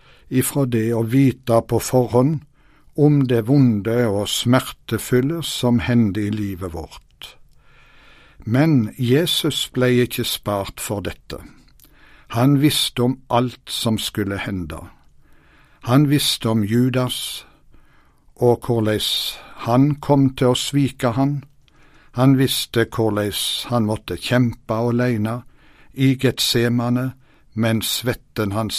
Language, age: English, 60-79